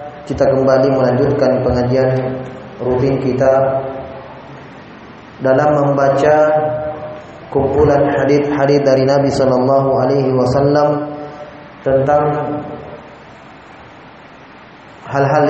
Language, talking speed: Indonesian, 65 wpm